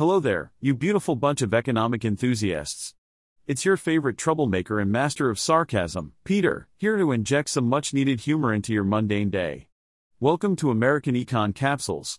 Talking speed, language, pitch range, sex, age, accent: 160 wpm, English, 115-155 Hz, male, 40-59, American